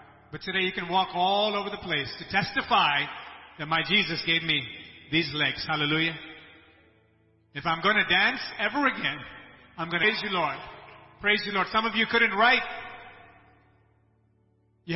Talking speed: 165 wpm